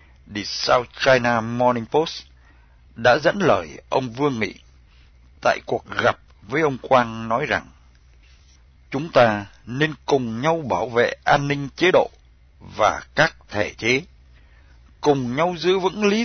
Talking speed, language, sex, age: 145 wpm, Vietnamese, male, 60-79